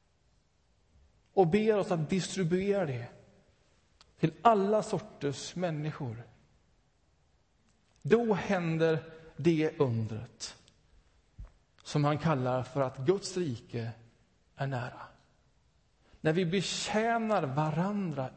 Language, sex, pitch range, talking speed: Swedish, male, 120-190 Hz, 90 wpm